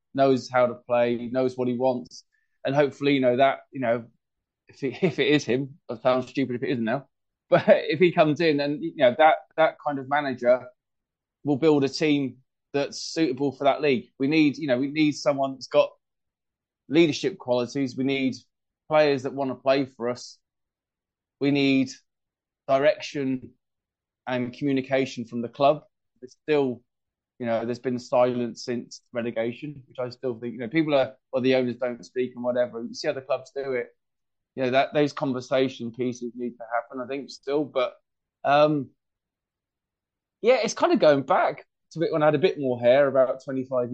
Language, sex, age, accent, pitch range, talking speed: English, male, 20-39, British, 125-150 Hz, 195 wpm